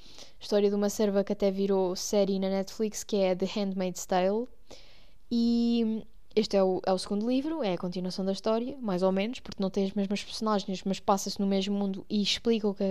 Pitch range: 200-240 Hz